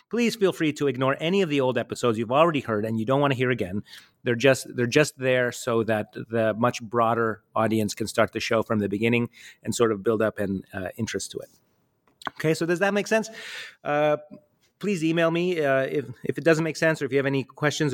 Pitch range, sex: 115-150 Hz, male